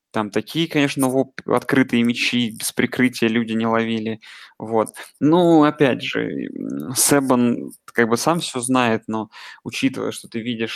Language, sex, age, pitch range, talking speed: Russian, male, 20-39, 115-140 Hz, 140 wpm